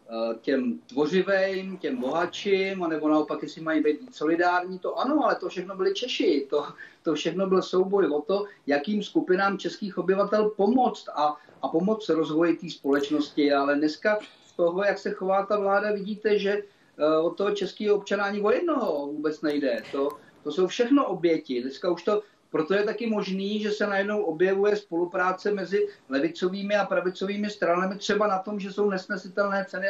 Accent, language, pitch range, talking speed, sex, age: native, Czech, 170-210 Hz, 170 wpm, male, 40-59